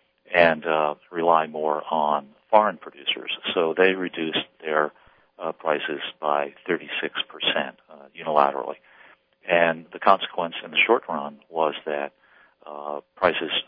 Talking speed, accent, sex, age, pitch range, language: 125 wpm, American, male, 50-69, 75-80 Hz, English